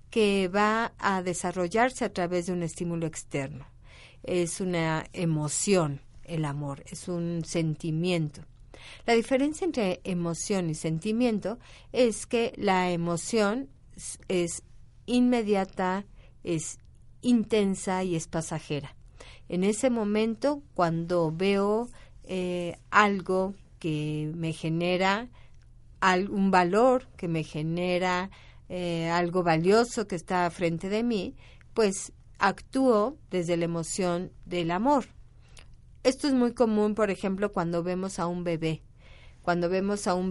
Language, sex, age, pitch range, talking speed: Spanish, female, 50-69, 165-205 Hz, 120 wpm